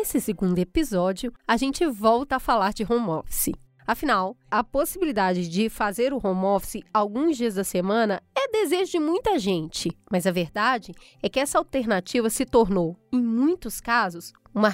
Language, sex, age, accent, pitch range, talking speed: English, female, 20-39, Brazilian, 195-285 Hz, 165 wpm